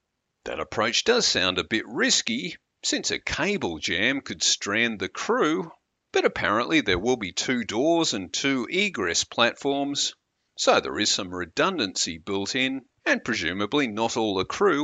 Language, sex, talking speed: English, male, 160 wpm